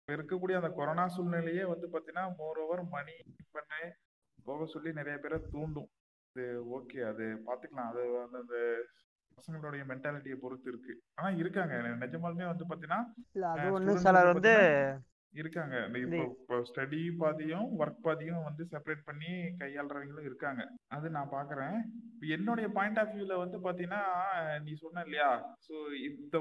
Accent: native